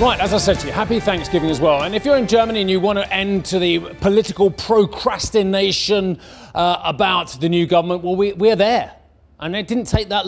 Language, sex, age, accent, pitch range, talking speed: English, male, 30-49, British, 155-210 Hz, 220 wpm